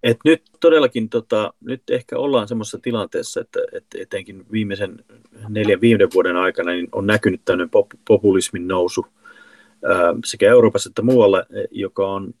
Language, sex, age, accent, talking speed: Finnish, male, 30-49, native, 145 wpm